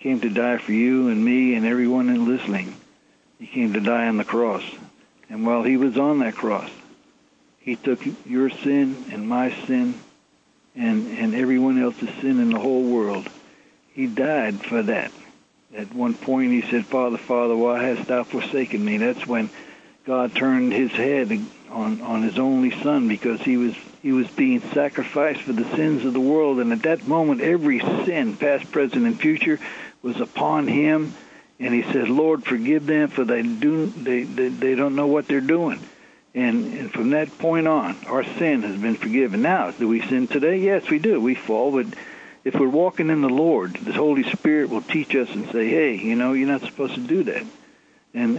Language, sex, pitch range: English, male, 125-185 Hz